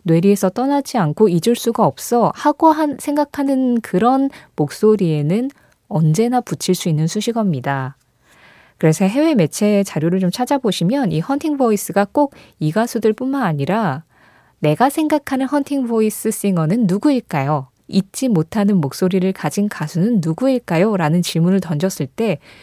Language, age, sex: Korean, 20-39, female